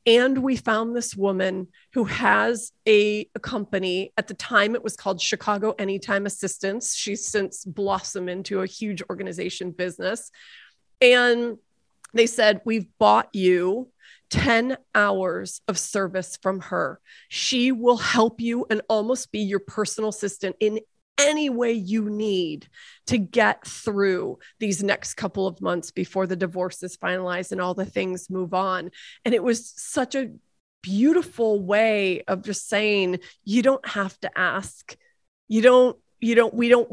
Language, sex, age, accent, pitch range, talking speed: English, female, 30-49, American, 195-235 Hz, 155 wpm